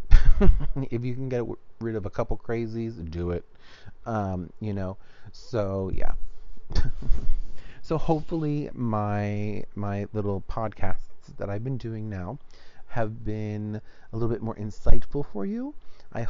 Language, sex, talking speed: English, male, 135 wpm